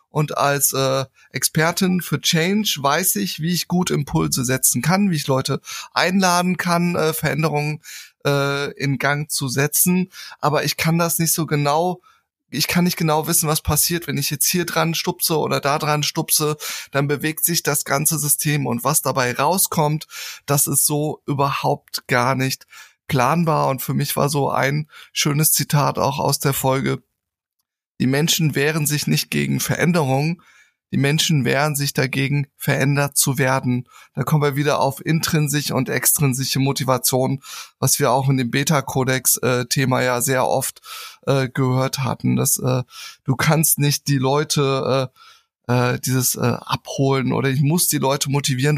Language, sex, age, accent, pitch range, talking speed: German, male, 20-39, German, 135-160 Hz, 165 wpm